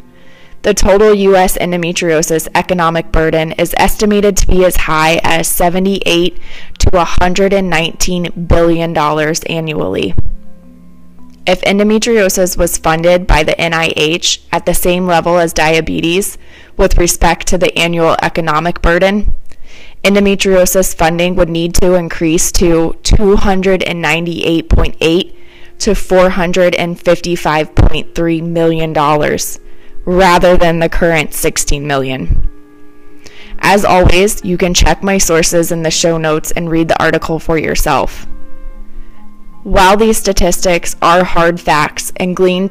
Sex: female